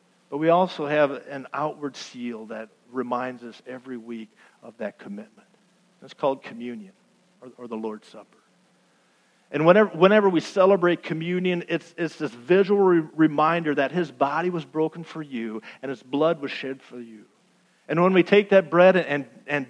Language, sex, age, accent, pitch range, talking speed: English, male, 50-69, American, 120-175 Hz, 175 wpm